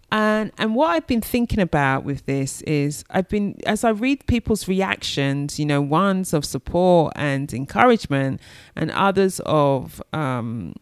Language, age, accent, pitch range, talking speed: English, 30-49, British, 135-175 Hz, 155 wpm